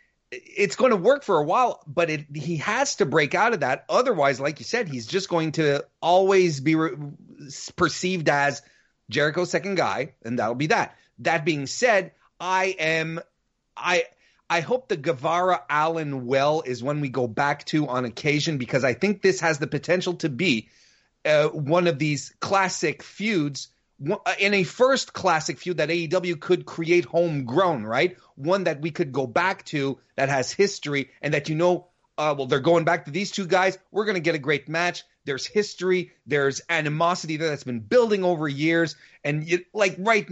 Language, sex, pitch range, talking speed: English, male, 145-185 Hz, 185 wpm